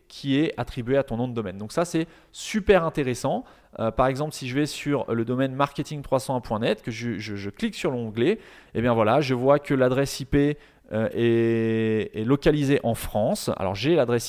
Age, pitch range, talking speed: 20-39, 115-150 Hz, 195 wpm